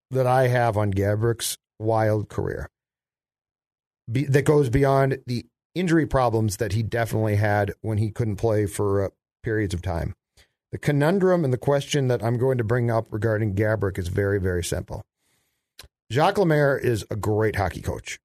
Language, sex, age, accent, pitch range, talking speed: English, male, 50-69, American, 110-140 Hz, 170 wpm